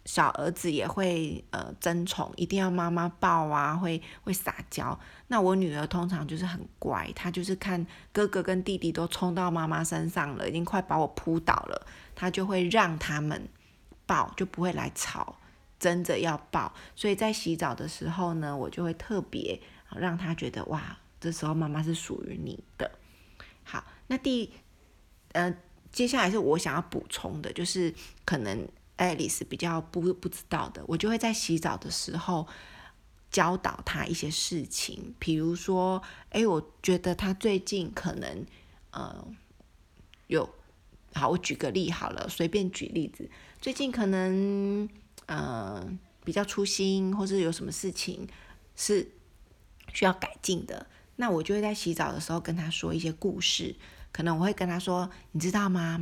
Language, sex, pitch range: Chinese, female, 165-190 Hz